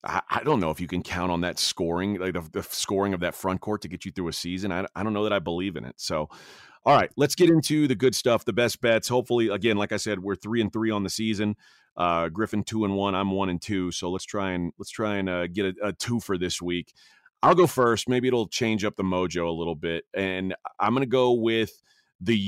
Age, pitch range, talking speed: 30-49, 95-120 Hz, 265 wpm